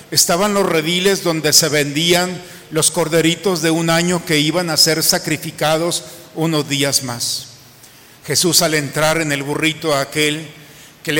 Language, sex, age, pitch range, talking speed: Spanish, male, 50-69, 150-185 Hz, 155 wpm